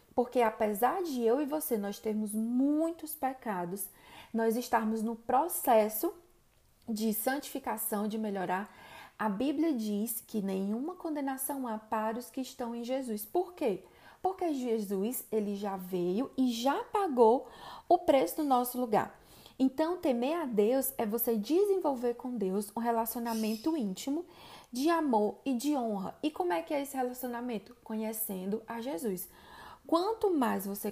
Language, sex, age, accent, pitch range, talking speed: Portuguese, female, 20-39, Brazilian, 220-290 Hz, 150 wpm